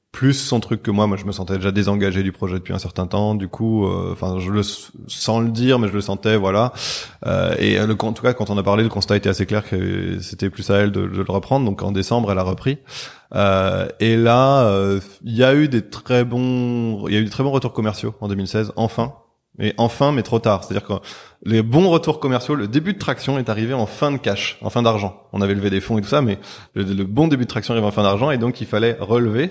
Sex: male